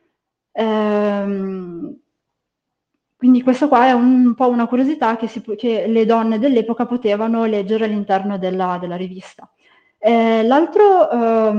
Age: 20-39